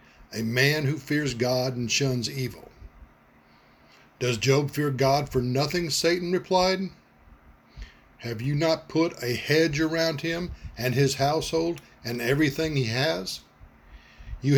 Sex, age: male, 50-69